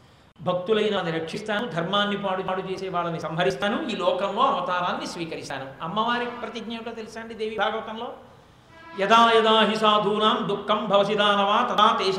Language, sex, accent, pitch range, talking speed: Telugu, male, native, 175-220 Hz, 75 wpm